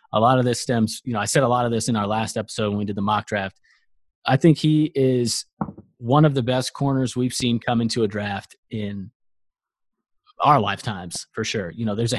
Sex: male